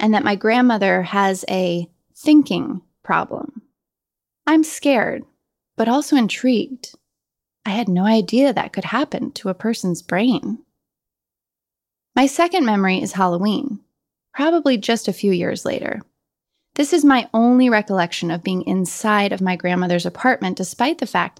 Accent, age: American, 20-39